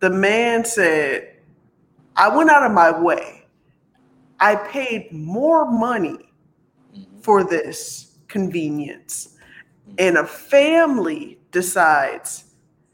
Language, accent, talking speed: English, American, 95 wpm